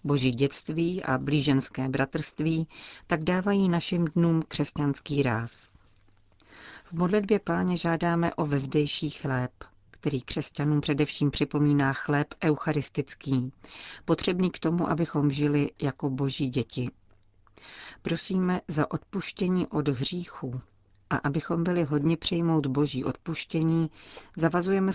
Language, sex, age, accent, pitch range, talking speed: Czech, female, 40-59, native, 130-165 Hz, 110 wpm